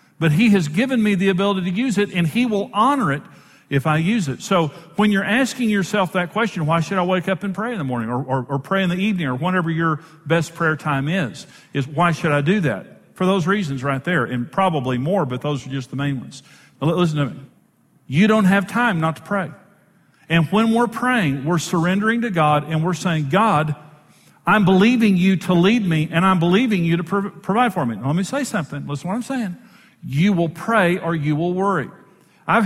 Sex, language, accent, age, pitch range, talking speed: male, English, American, 50-69, 140-195 Hz, 230 wpm